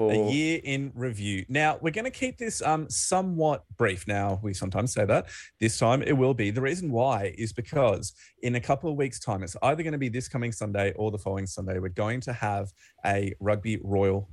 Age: 30-49